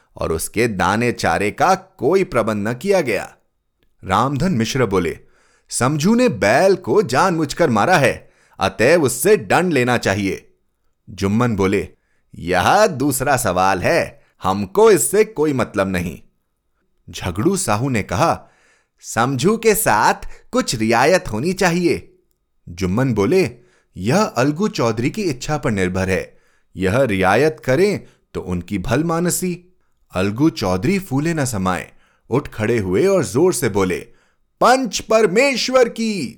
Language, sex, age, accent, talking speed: Hindi, male, 30-49, native, 130 wpm